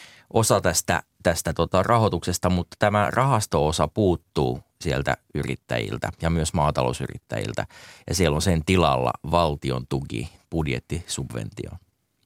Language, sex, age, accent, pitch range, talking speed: Finnish, male, 30-49, native, 80-100 Hz, 110 wpm